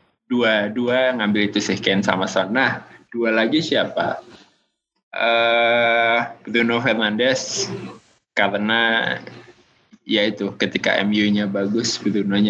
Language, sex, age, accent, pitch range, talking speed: Indonesian, male, 20-39, native, 95-115 Hz, 95 wpm